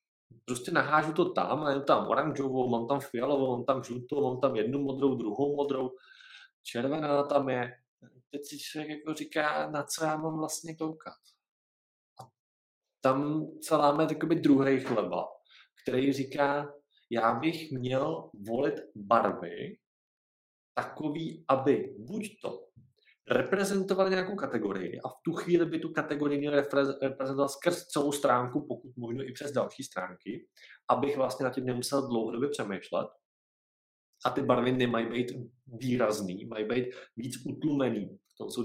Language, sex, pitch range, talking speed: Czech, male, 125-150 Hz, 135 wpm